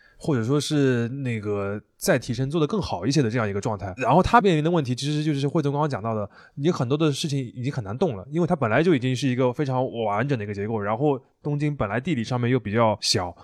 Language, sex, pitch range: Chinese, male, 105-140 Hz